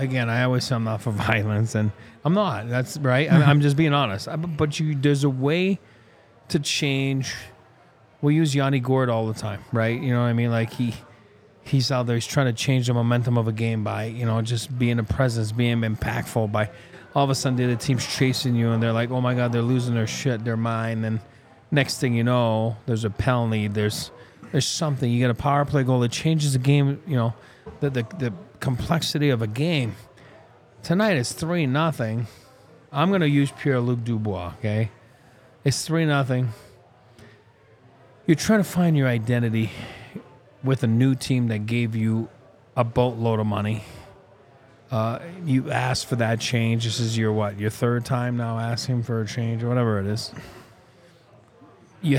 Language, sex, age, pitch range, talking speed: English, male, 30-49, 115-135 Hz, 190 wpm